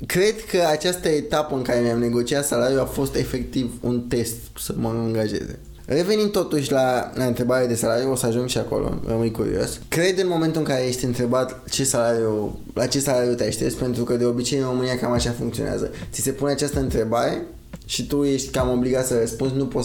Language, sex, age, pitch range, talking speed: Romanian, male, 20-39, 115-135 Hz, 205 wpm